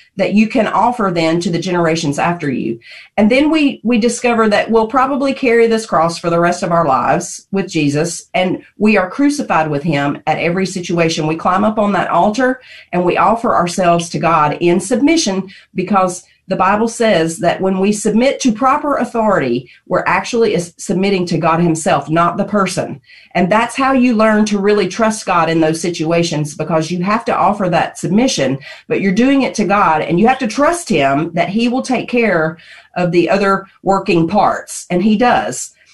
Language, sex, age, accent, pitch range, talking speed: English, female, 40-59, American, 165-220 Hz, 195 wpm